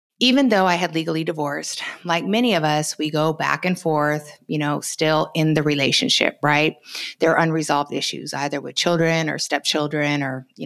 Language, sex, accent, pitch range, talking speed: English, female, American, 150-175 Hz, 185 wpm